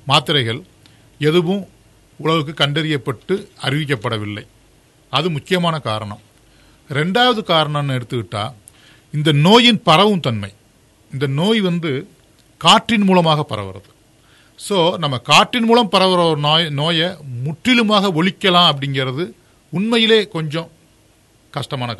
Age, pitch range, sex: 50-69, 115-165 Hz, male